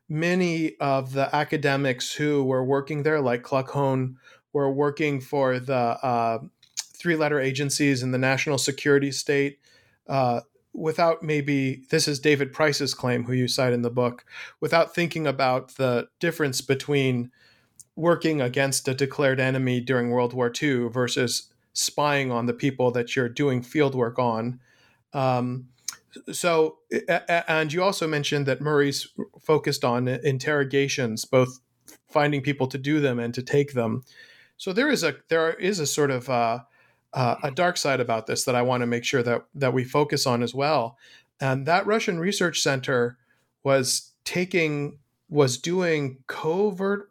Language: English